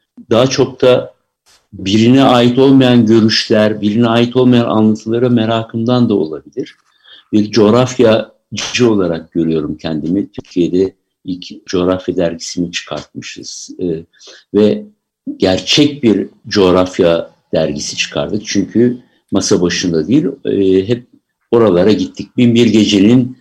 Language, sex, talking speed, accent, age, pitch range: Turkish, male, 105 wpm, native, 60-79, 95-125 Hz